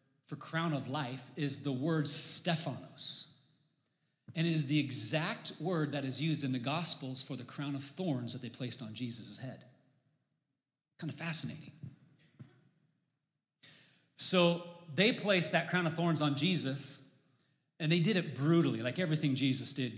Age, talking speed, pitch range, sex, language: 30-49, 155 wpm, 140-165 Hz, male, English